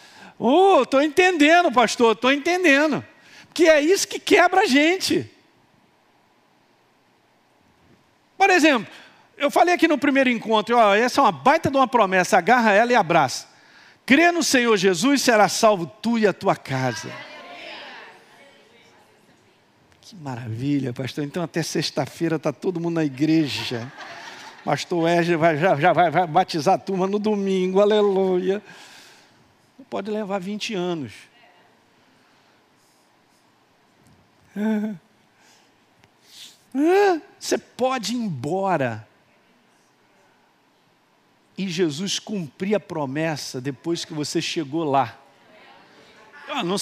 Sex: male